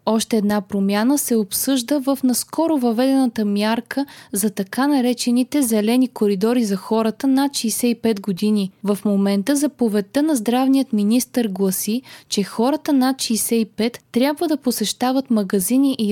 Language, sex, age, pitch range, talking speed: Bulgarian, female, 20-39, 205-265 Hz, 130 wpm